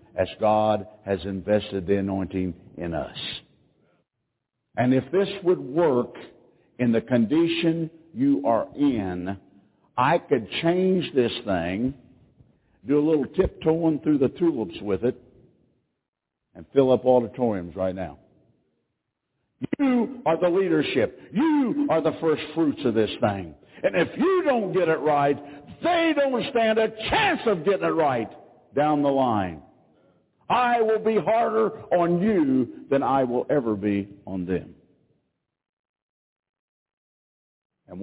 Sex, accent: male, American